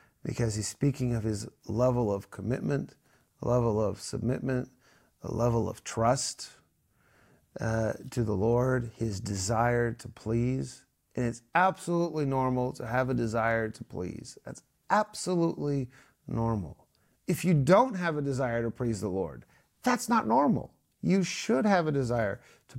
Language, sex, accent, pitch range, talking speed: English, male, American, 120-175 Hz, 145 wpm